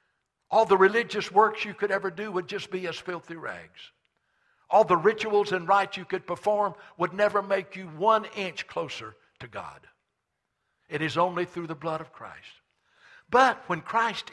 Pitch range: 140-200 Hz